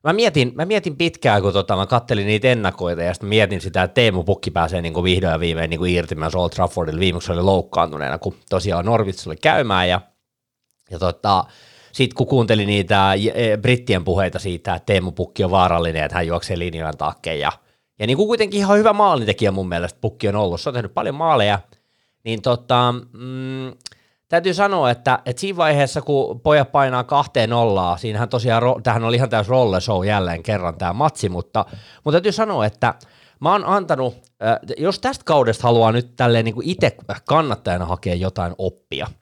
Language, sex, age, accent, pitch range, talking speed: Finnish, male, 30-49, native, 95-130 Hz, 180 wpm